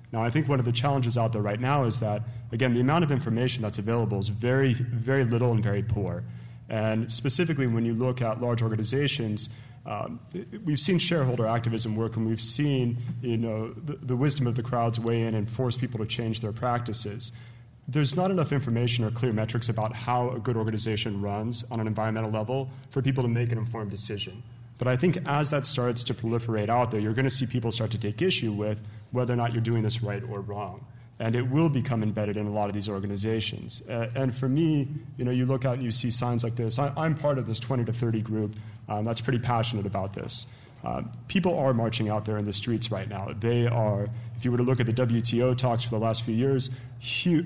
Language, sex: English, male